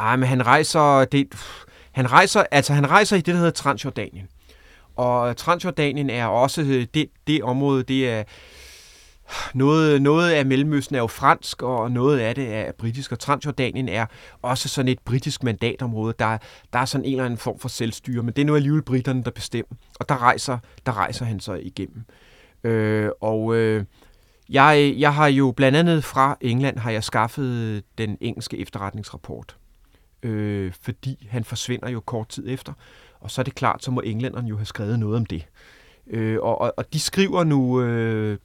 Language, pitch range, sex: Danish, 110-135 Hz, male